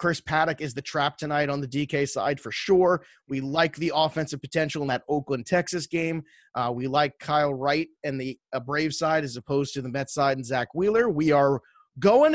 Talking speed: 215 wpm